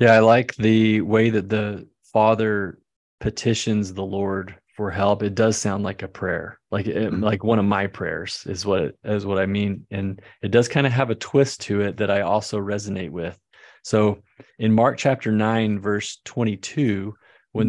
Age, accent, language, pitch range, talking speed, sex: 30-49, American, English, 100-115 Hz, 180 wpm, male